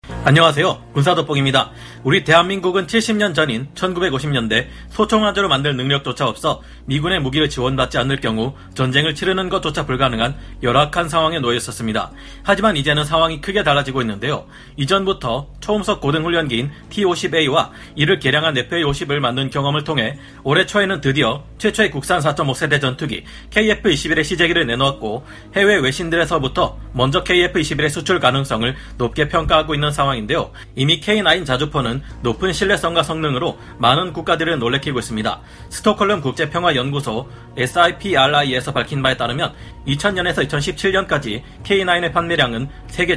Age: 40-59